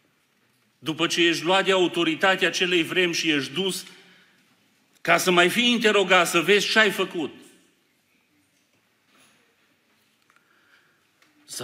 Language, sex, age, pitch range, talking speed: Romanian, male, 40-59, 110-165 Hz, 115 wpm